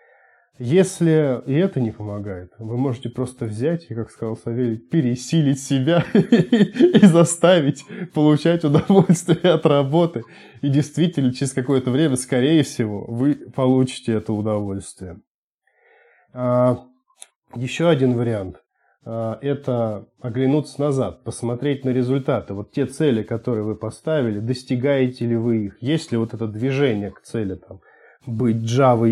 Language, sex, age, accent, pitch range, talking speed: Russian, male, 20-39, native, 115-150 Hz, 130 wpm